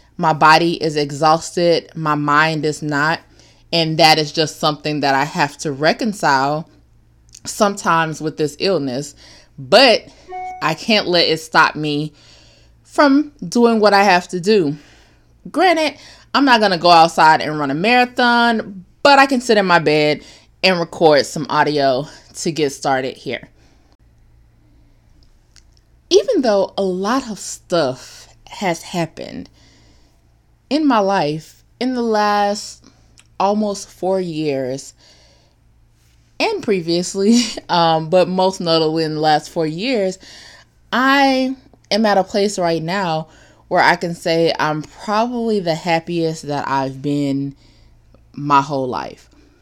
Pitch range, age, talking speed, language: 145-200 Hz, 20-39, 135 wpm, English